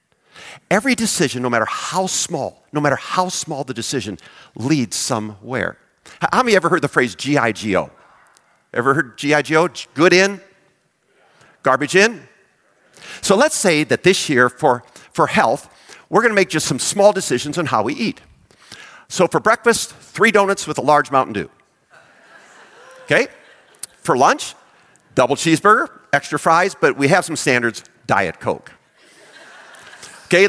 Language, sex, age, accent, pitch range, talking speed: English, male, 50-69, American, 130-190 Hz, 150 wpm